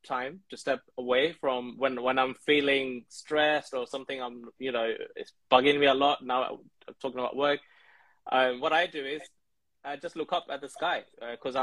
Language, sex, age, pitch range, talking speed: English, male, 20-39, 130-155 Hz, 200 wpm